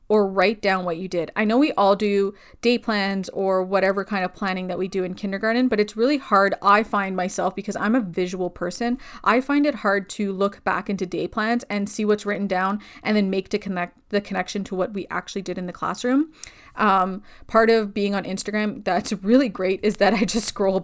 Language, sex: English, female